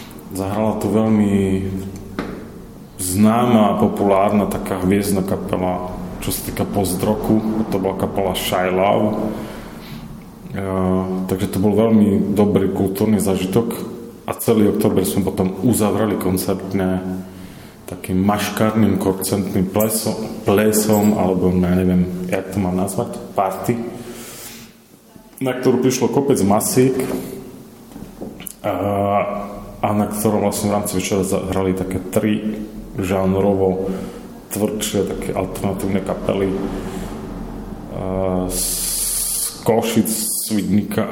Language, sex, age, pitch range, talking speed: Slovak, male, 30-49, 95-105 Hz, 105 wpm